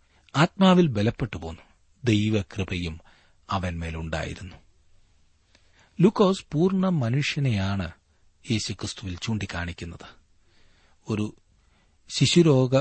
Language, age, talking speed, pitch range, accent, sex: Malayalam, 40-59, 55 wpm, 90-120 Hz, native, male